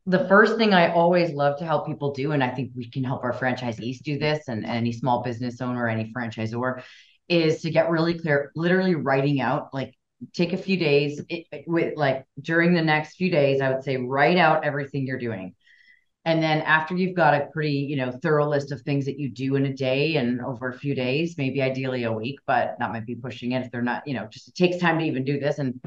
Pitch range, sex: 130-165 Hz, female